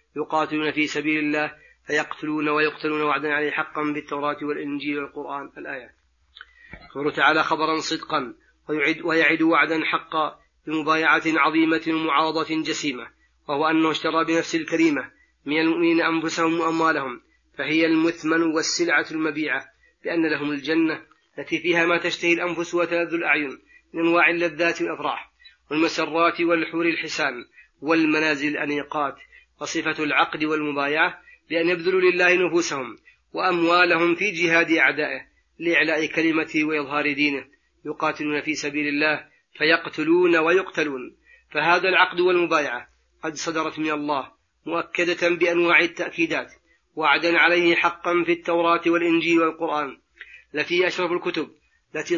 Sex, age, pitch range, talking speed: male, 30-49, 150-170 Hz, 115 wpm